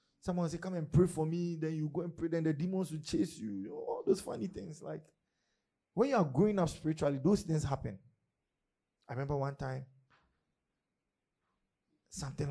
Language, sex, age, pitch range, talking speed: English, male, 20-39, 105-155 Hz, 185 wpm